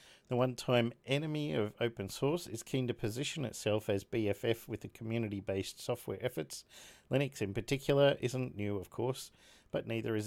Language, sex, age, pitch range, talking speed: English, male, 50-69, 105-125 Hz, 165 wpm